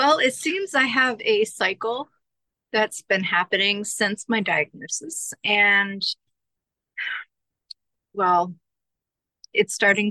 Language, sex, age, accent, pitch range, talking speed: English, female, 30-49, American, 170-215 Hz, 100 wpm